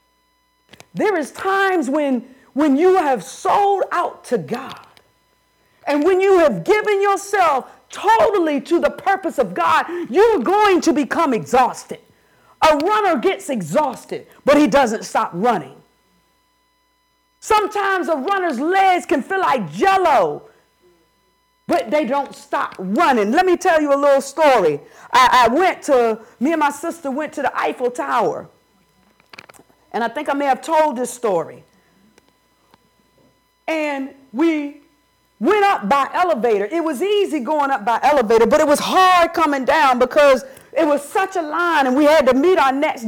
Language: English